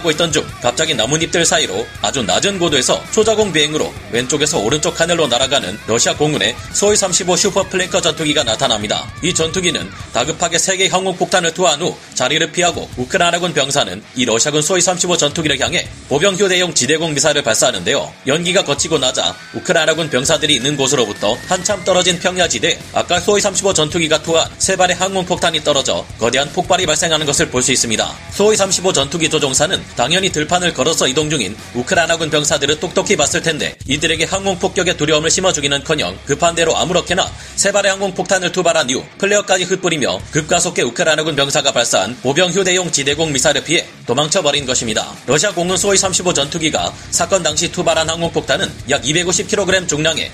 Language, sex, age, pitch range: Korean, male, 30-49, 150-185 Hz